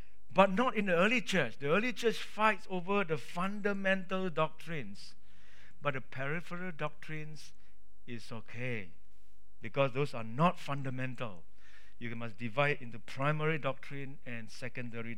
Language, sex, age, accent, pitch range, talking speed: English, male, 60-79, Malaysian, 140-200 Hz, 130 wpm